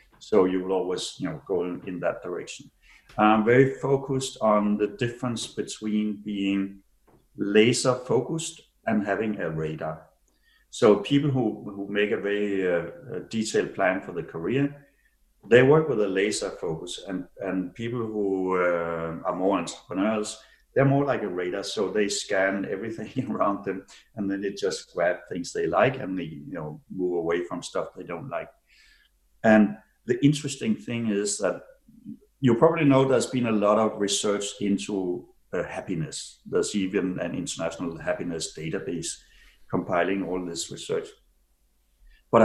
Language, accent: English, Danish